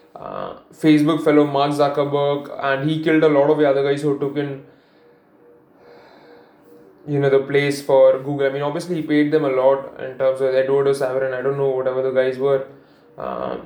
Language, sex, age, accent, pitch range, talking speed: English, male, 20-39, Indian, 135-155 Hz, 195 wpm